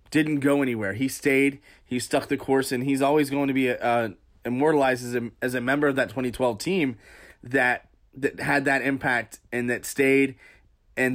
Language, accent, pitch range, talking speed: English, American, 125-150 Hz, 195 wpm